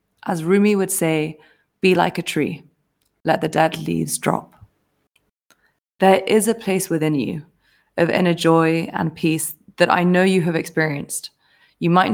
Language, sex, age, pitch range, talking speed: English, female, 20-39, 160-190 Hz, 160 wpm